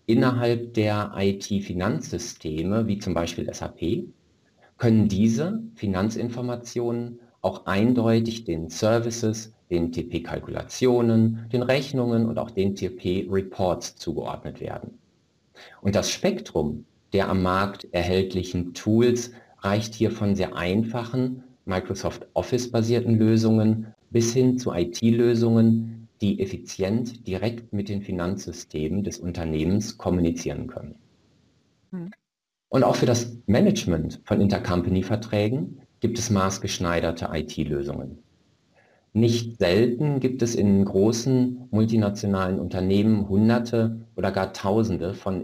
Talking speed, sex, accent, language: 105 wpm, male, German, German